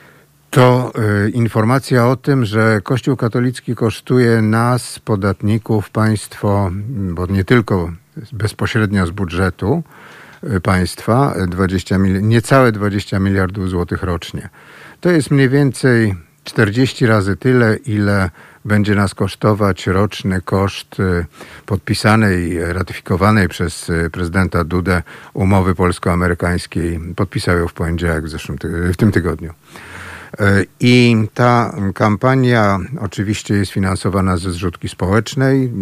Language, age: Polish, 50-69